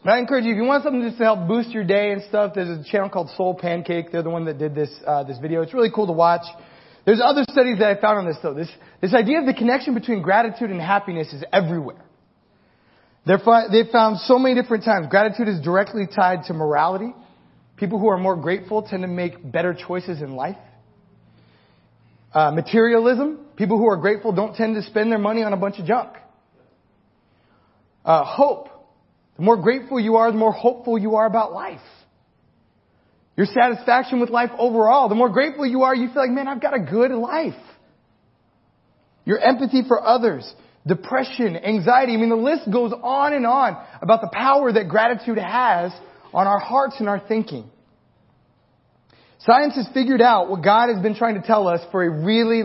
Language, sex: English, male